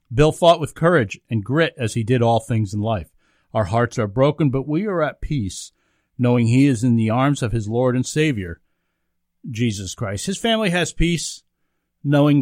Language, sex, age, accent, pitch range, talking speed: English, male, 50-69, American, 115-160 Hz, 195 wpm